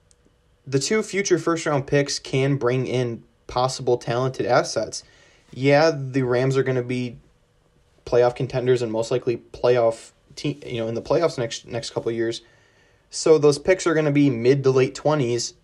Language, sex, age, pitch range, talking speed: English, male, 20-39, 115-140 Hz, 180 wpm